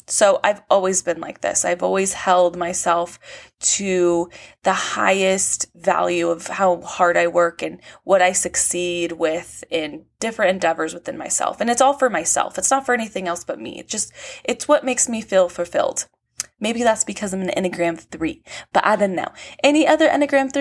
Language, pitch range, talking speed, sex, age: English, 175-240 Hz, 185 wpm, female, 20-39